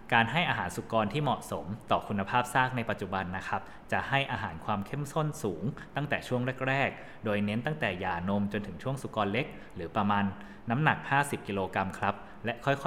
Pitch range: 100-125 Hz